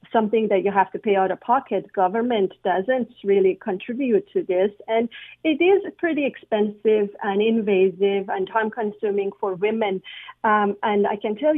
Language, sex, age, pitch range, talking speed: English, female, 50-69, 205-260 Hz, 160 wpm